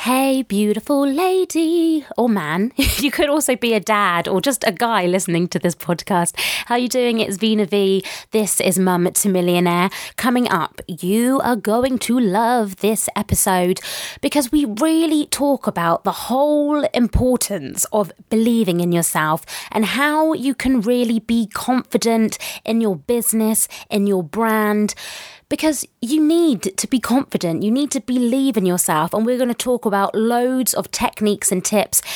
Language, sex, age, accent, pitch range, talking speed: English, female, 20-39, British, 190-250 Hz, 165 wpm